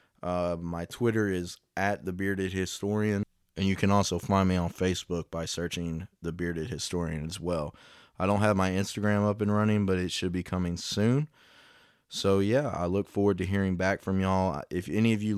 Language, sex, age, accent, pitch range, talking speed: English, male, 20-39, American, 90-100 Hz, 185 wpm